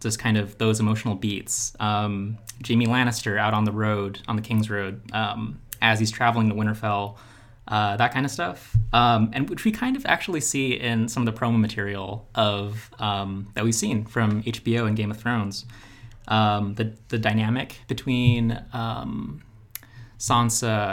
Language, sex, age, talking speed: English, male, 20-39, 170 wpm